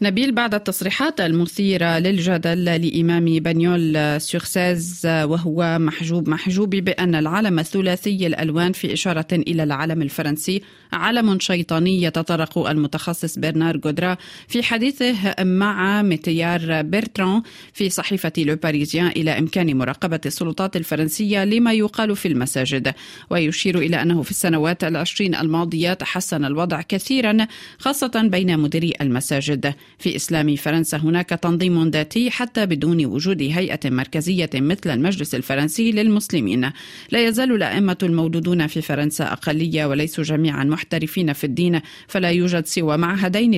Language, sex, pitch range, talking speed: Arabic, female, 155-185 Hz, 120 wpm